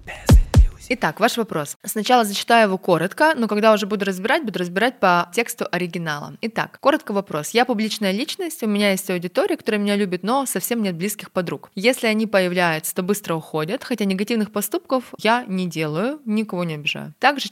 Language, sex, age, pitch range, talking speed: Russian, female, 20-39, 170-225 Hz, 175 wpm